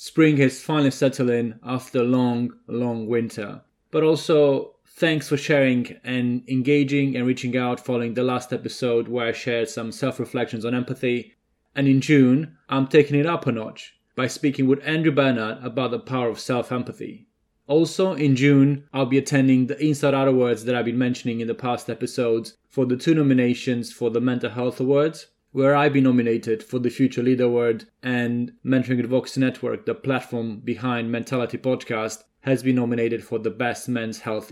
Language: English